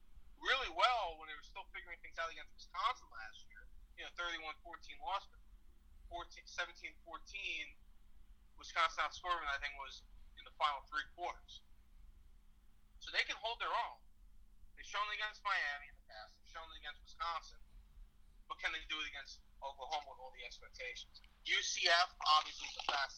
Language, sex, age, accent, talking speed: English, male, 30-49, American, 175 wpm